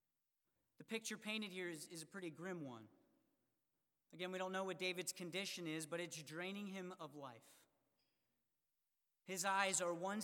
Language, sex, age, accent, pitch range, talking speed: English, male, 40-59, American, 165-205 Hz, 165 wpm